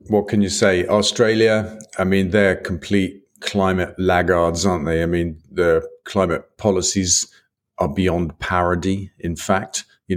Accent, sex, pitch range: British, male, 90-105 Hz